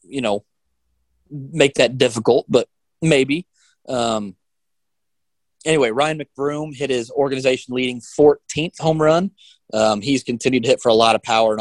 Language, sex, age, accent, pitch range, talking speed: English, male, 30-49, American, 105-135 Hz, 150 wpm